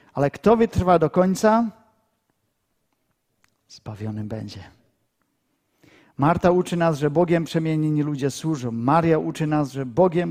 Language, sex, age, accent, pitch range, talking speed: Czech, male, 50-69, Polish, 115-165 Hz, 115 wpm